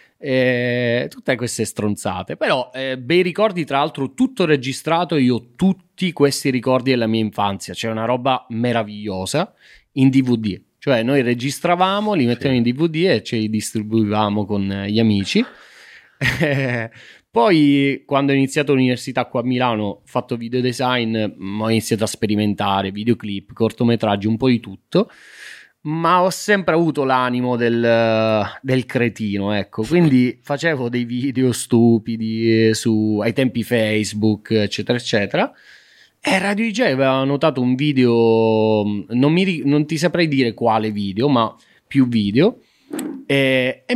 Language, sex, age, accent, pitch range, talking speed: Italian, male, 30-49, native, 110-145 Hz, 140 wpm